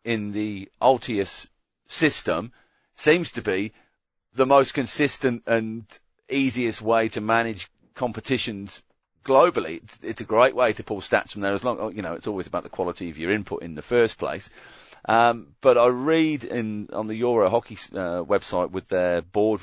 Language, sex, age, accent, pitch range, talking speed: English, male, 40-59, British, 90-125 Hz, 175 wpm